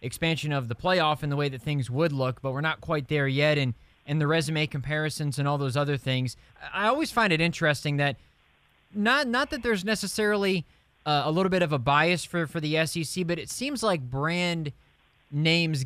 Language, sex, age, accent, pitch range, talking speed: English, male, 20-39, American, 140-180 Hz, 205 wpm